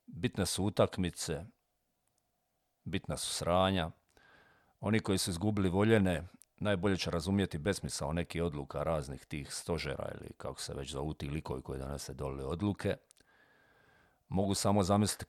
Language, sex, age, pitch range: Croatian, male, 50-69, 75-90 Hz